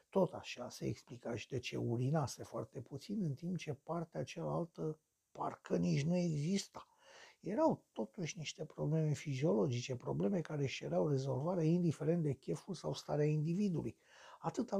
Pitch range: 130-170 Hz